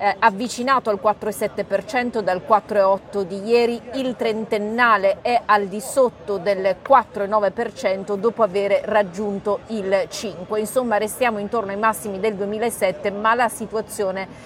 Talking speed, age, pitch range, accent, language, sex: 130 wpm, 40-59, 205-235 Hz, native, Italian, female